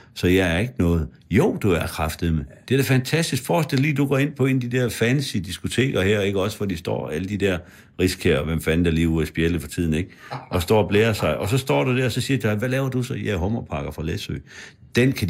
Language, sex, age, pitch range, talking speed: Danish, male, 60-79, 90-120 Hz, 280 wpm